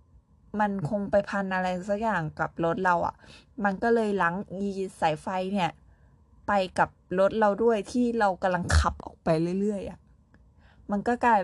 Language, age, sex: Thai, 20-39, female